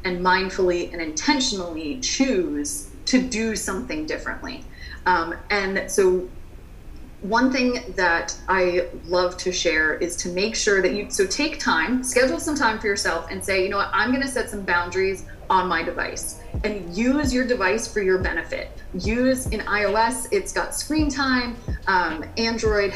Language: English